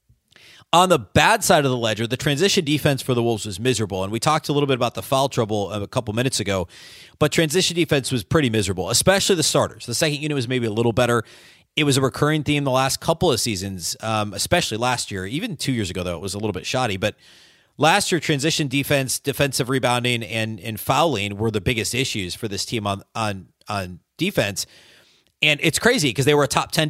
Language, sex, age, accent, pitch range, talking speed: English, male, 30-49, American, 115-150 Hz, 225 wpm